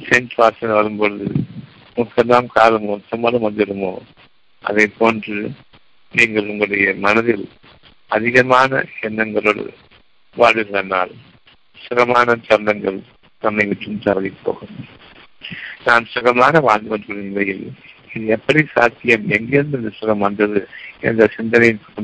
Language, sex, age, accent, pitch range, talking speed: Tamil, male, 60-79, native, 105-125 Hz, 60 wpm